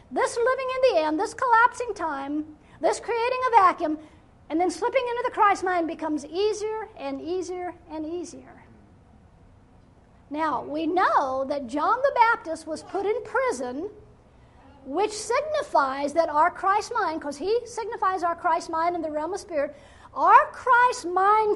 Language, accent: English, American